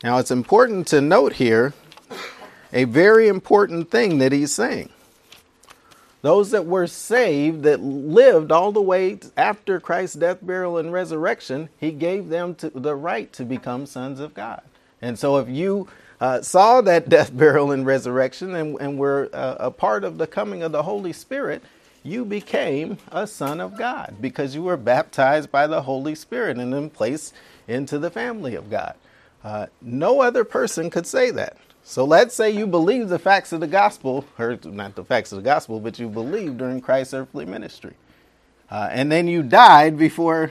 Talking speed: 180 wpm